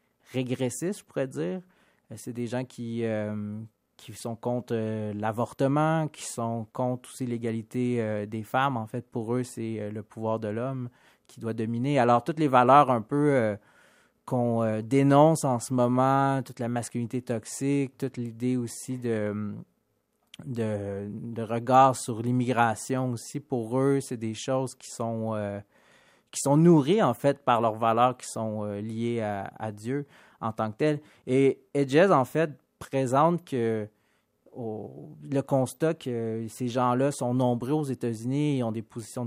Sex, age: male, 30-49